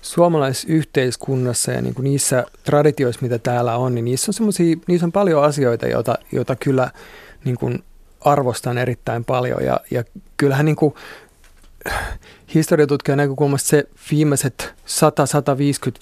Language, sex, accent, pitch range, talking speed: Finnish, male, native, 115-145 Hz, 115 wpm